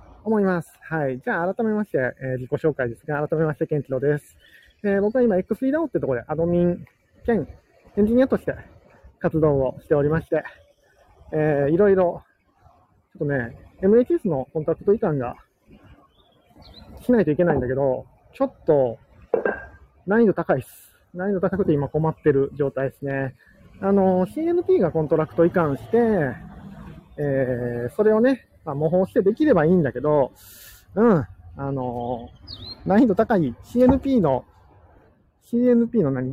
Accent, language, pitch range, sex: native, Japanese, 130-200 Hz, male